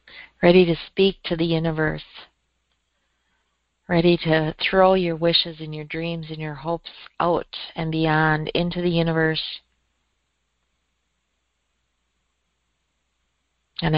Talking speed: 105 wpm